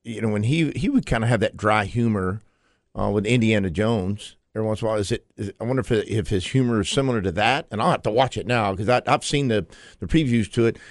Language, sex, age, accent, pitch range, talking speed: English, male, 50-69, American, 100-130 Hz, 280 wpm